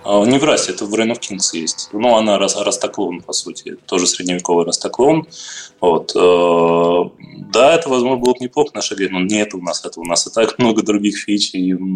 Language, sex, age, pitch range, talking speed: Russian, male, 20-39, 90-110 Hz, 190 wpm